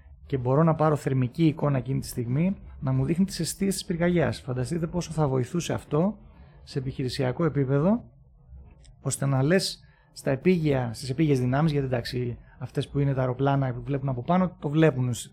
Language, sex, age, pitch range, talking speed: Greek, male, 30-49, 125-170 Hz, 170 wpm